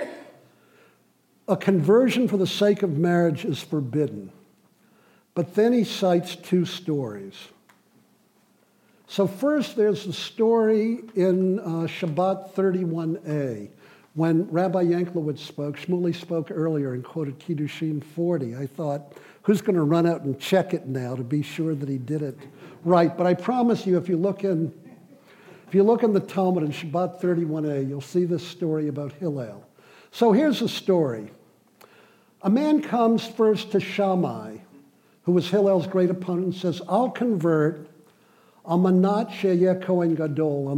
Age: 60-79